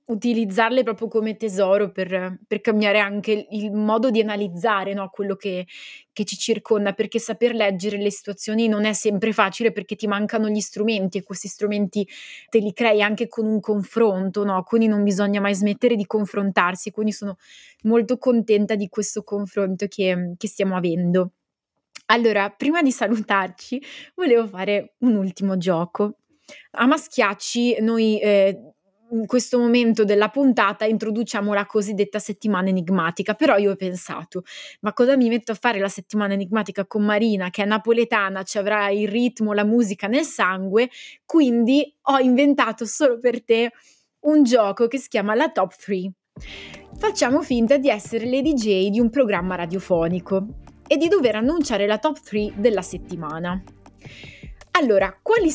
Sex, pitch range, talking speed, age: female, 200-235 Hz, 155 wpm, 20-39